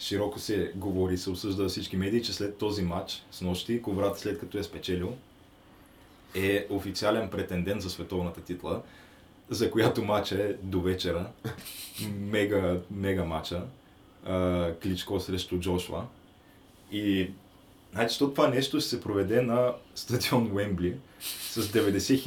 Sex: male